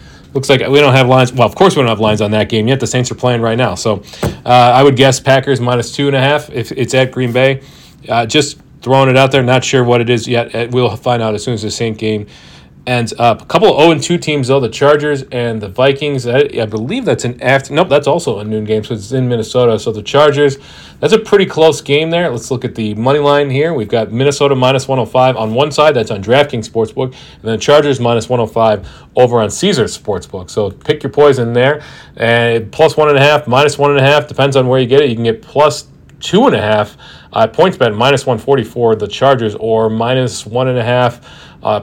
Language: English